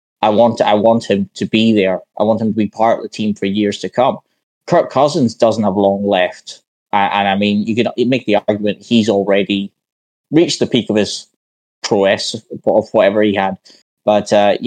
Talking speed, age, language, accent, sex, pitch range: 205 wpm, 10-29, English, British, male, 100-115 Hz